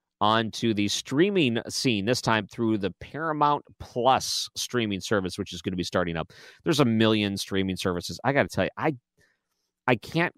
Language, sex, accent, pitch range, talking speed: English, male, American, 90-120 Hz, 190 wpm